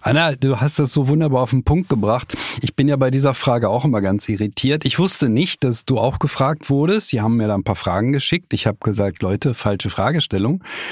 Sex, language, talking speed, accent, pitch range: male, German, 230 wpm, German, 105-150 Hz